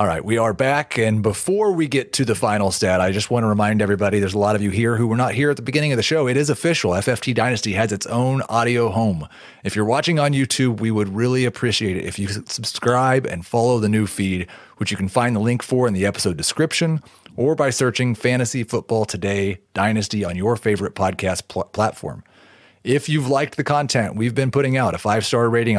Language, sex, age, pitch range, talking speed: English, male, 30-49, 105-135 Hz, 230 wpm